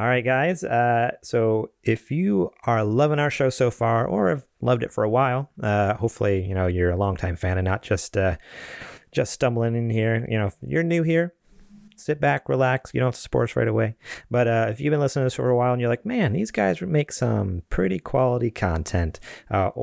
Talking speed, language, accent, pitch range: 230 wpm, English, American, 100-125 Hz